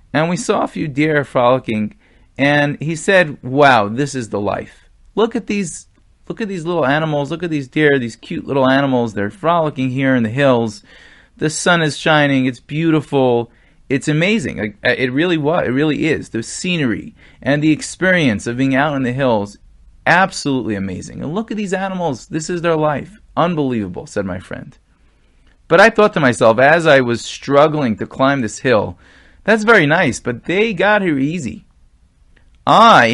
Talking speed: 180 wpm